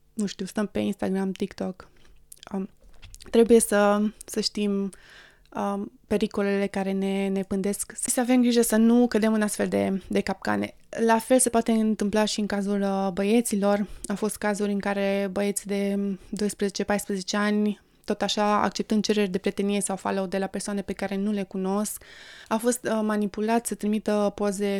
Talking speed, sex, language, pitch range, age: 170 wpm, female, Romanian, 200-215 Hz, 20-39